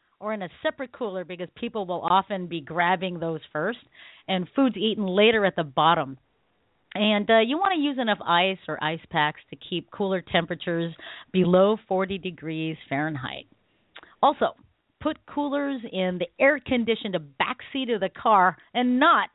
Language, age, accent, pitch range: English, 40-59, American, 165-225 Hz